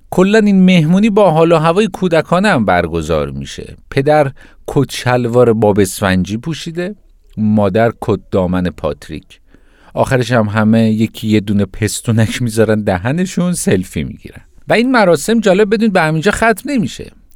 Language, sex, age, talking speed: Persian, male, 50-69, 130 wpm